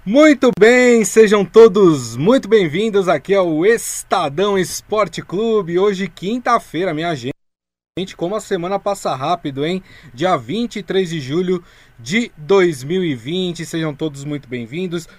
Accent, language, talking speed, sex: Brazilian, Portuguese, 120 wpm, male